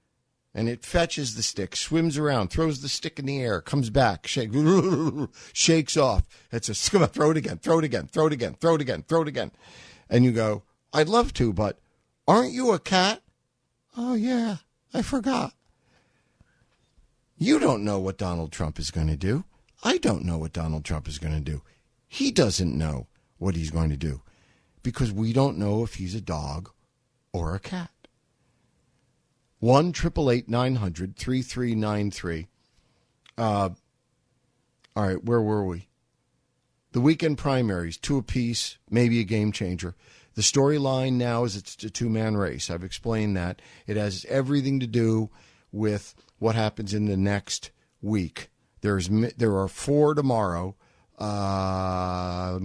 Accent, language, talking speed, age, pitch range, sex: American, English, 165 wpm, 60-79, 95-140 Hz, male